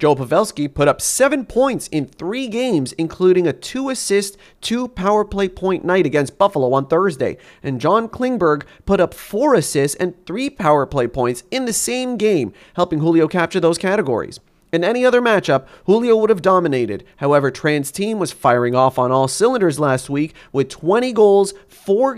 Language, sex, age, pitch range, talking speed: English, male, 30-49, 145-210 Hz, 180 wpm